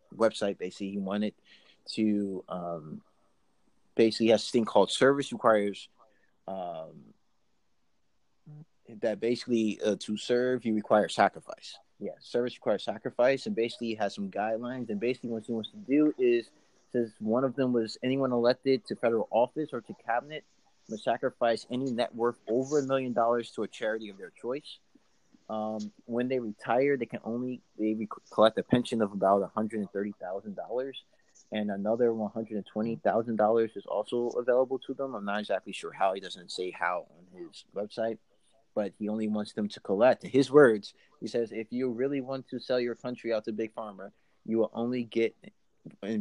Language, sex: English, male